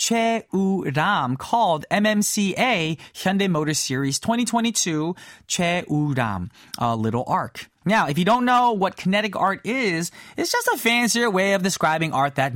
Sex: male